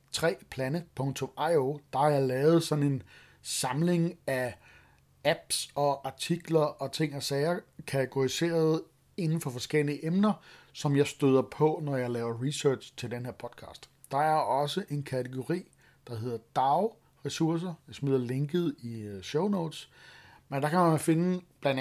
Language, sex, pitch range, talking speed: Danish, male, 130-160 Hz, 150 wpm